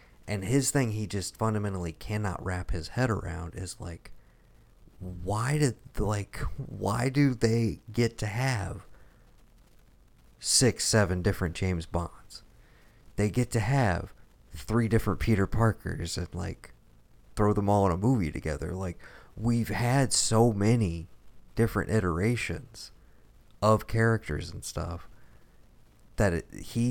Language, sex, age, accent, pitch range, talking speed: English, male, 40-59, American, 95-115 Hz, 125 wpm